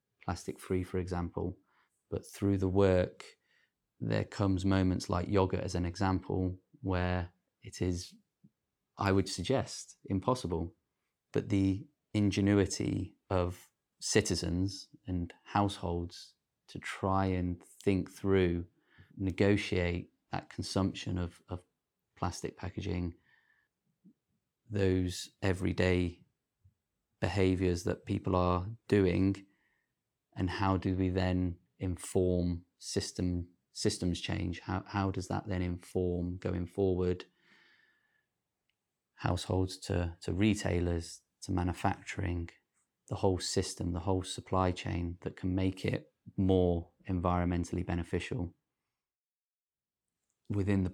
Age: 30-49